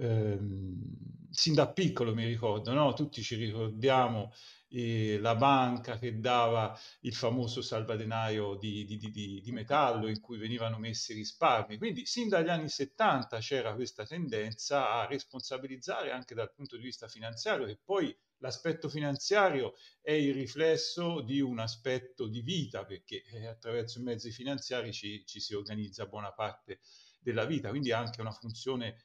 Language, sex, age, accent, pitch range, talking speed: Italian, male, 40-59, native, 105-135 Hz, 155 wpm